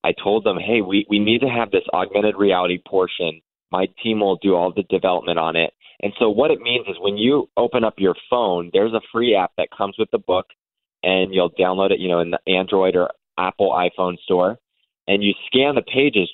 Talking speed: 225 wpm